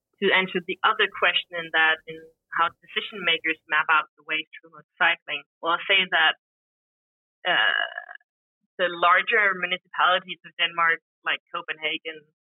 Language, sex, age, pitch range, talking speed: Hungarian, female, 30-49, 160-185 Hz, 140 wpm